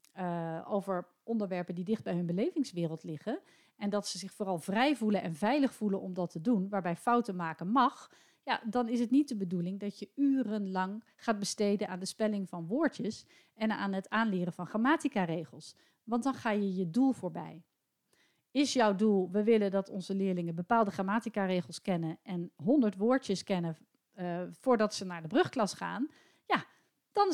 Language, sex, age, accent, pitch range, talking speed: Dutch, female, 40-59, Dutch, 195-260 Hz, 175 wpm